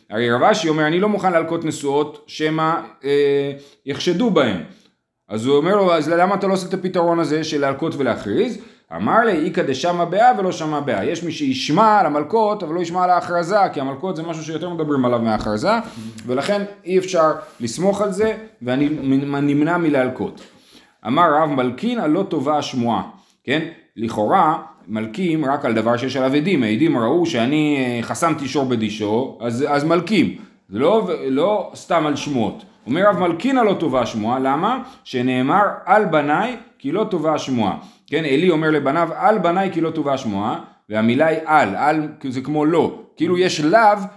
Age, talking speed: 30-49, 170 wpm